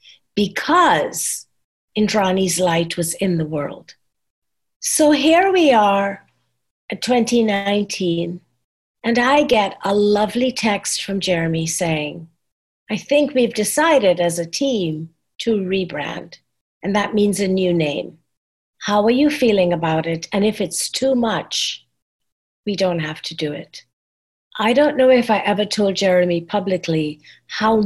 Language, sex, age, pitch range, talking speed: English, female, 50-69, 175-255 Hz, 140 wpm